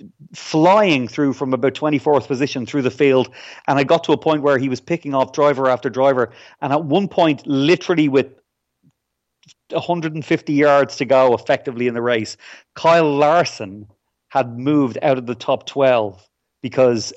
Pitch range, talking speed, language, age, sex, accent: 115-150 Hz, 165 wpm, English, 30-49, male, Irish